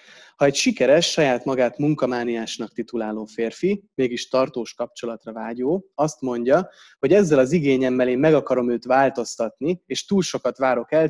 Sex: male